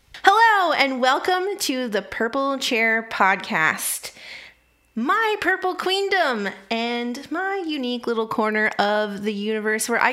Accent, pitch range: American, 225-305 Hz